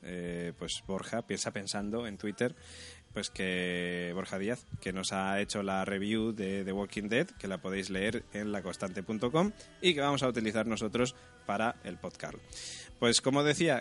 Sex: male